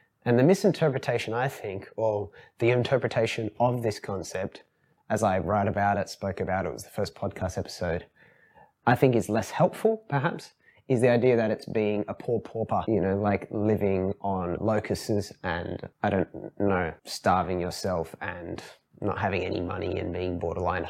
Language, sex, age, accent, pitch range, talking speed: English, male, 20-39, Australian, 100-125 Hz, 170 wpm